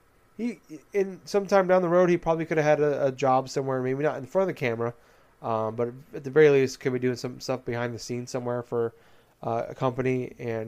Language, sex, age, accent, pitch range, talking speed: English, male, 20-39, American, 115-140 Hz, 240 wpm